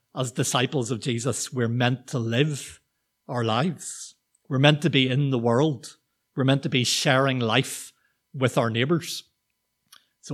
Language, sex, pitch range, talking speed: English, male, 125-150 Hz, 155 wpm